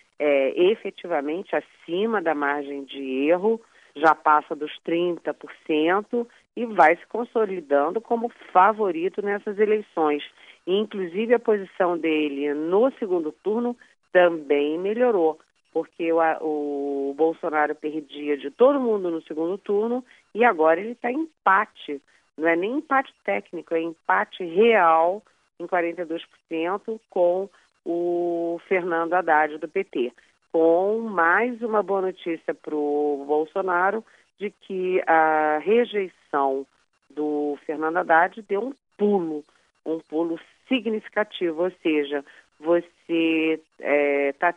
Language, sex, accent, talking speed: Portuguese, female, Brazilian, 115 wpm